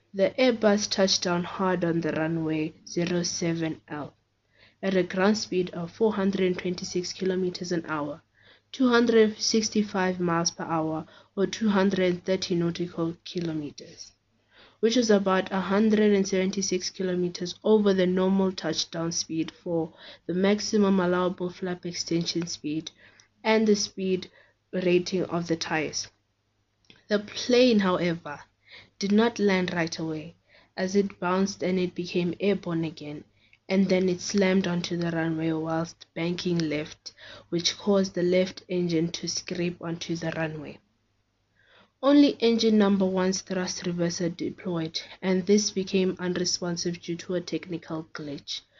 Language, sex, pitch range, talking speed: English, female, 165-190 Hz, 125 wpm